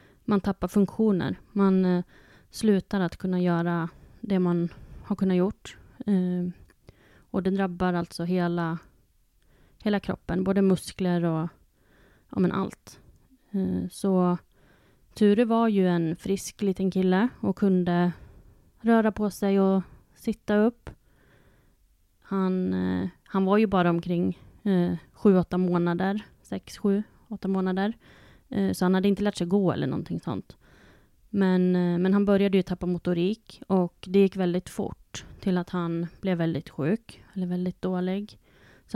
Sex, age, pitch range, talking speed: female, 20-39, 175-200 Hz, 140 wpm